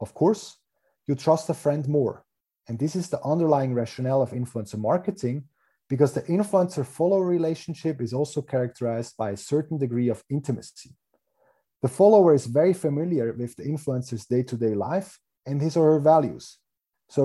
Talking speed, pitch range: 155 wpm, 125-165 Hz